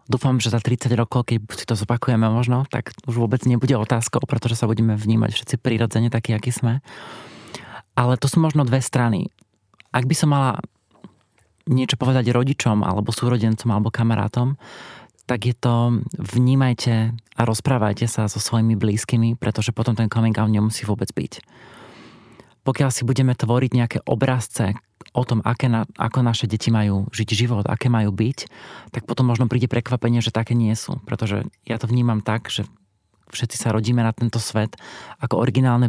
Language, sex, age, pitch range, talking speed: Slovak, male, 30-49, 110-125 Hz, 165 wpm